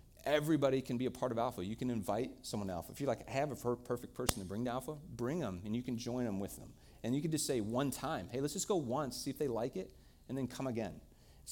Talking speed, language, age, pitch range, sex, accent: 295 wpm, English, 30-49, 90-120 Hz, male, American